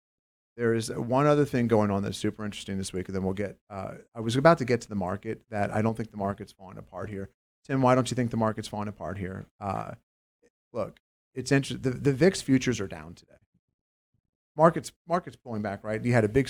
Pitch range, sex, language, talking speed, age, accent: 95-120 Hz, male, English, 235 wpm, 40-59, American